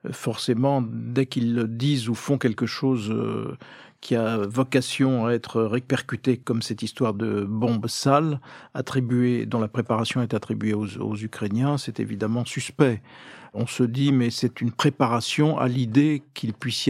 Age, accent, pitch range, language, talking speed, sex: 50-69, French, 115-135 Hz, French, 160 wpm, male